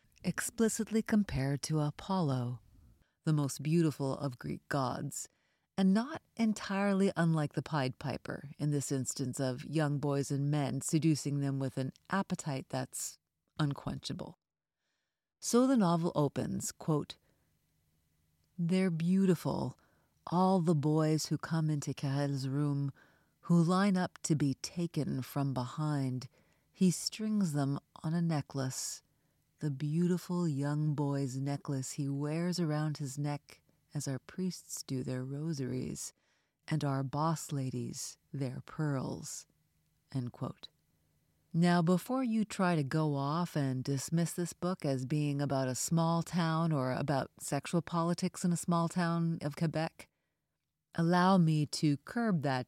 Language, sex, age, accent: English, female, 40-59, American